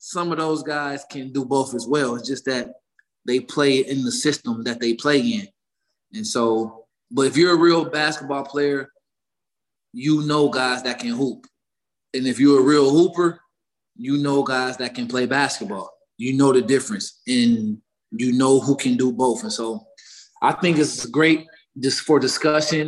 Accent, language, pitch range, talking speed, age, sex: American, English, 125-160 Hz, 180 wpm, 20-39, male